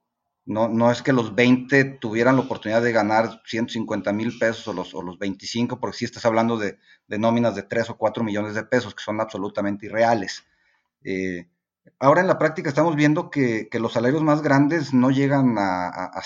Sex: male